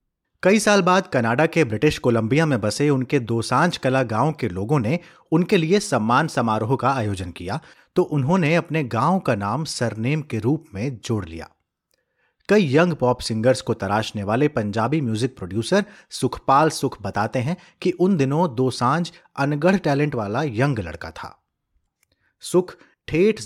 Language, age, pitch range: Hindi, 30-49, 110-160 Hz